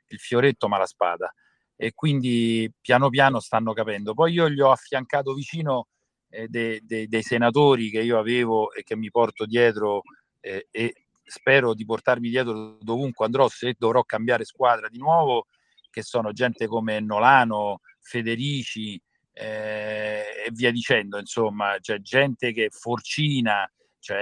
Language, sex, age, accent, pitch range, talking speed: Italian, male, 40-59, native, 110-130 Hz, 145 wpm